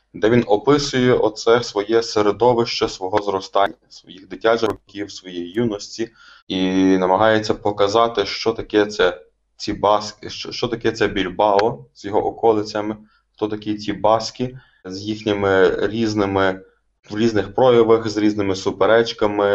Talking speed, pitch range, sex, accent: 130 wpm, 100-115 Hz, male, native